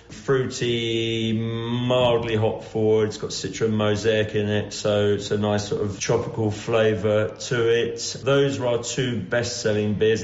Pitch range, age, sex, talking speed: 105-120 Hz, 40-59, male, 145 wpm